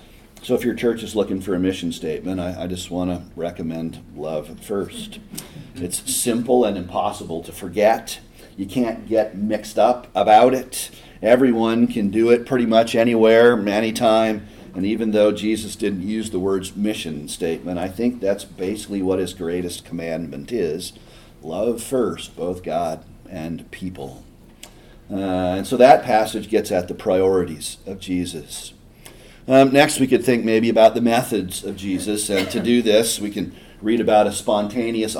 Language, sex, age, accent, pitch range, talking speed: English, male, 40-59, American, 95-115 Hz, 165 wpm